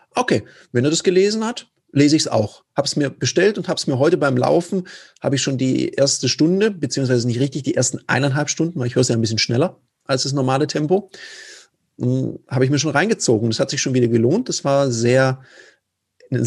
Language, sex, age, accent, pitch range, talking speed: German, male, 40-59, German, 125-165 Hz, 220 wpm